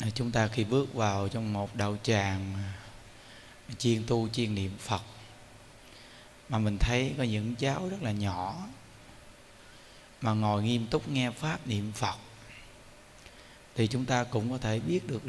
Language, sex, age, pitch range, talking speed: Vietnamese, male, 20-39, 110-130 Hz, 155 wpm